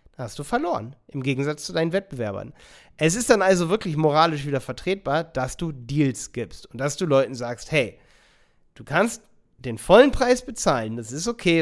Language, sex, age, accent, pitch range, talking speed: German, male, 30-49, German, 130-175 Hz, 180 wpm